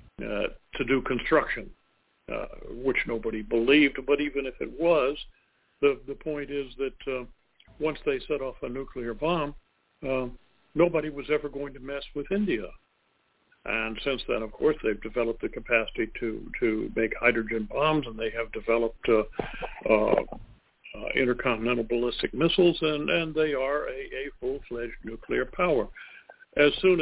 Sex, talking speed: male, 155 wpm